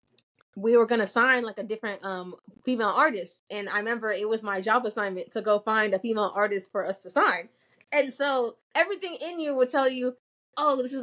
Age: 20-39